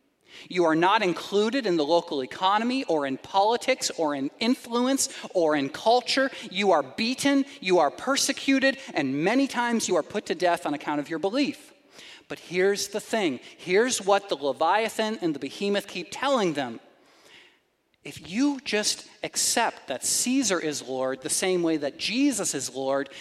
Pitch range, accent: 200-275 Hz, American